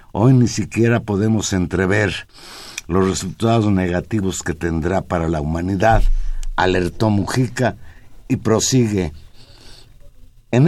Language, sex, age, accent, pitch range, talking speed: Spanish, male, 60-79, Mexican, 95-130 Hz, 100 wpm